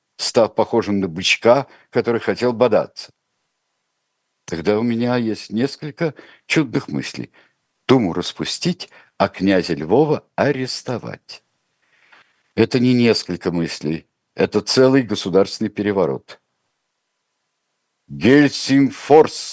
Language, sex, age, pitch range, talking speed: Russian, male, 60-79, 95-135 Hz, 90 wpm